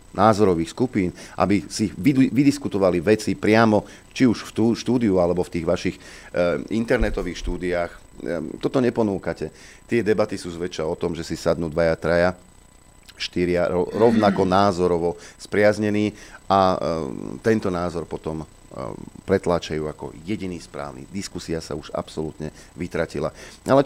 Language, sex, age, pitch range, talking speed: Slovak, male, 40-59, 85-105 Hz, 125 wpm